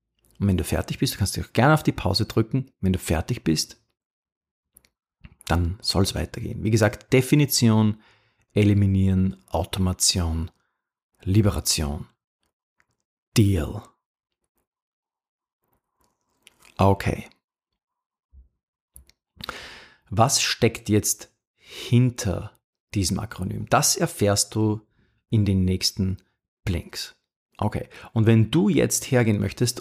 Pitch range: 95-120 Hz